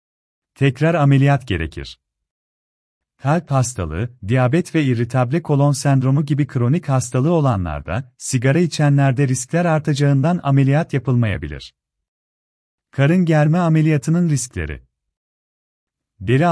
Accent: native